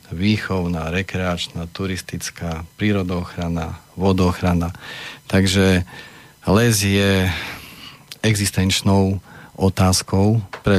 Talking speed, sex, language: 60 wpm, male, Slovak